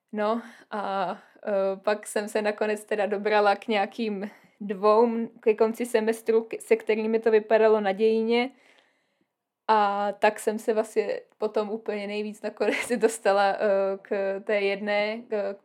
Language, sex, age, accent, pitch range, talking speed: Czech, female, 20-39, native, 200-220 Hz, 135 wpm